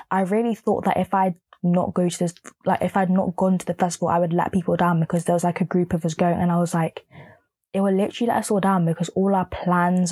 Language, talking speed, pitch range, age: English, 280 wpm, 170-195 Hz, 20-39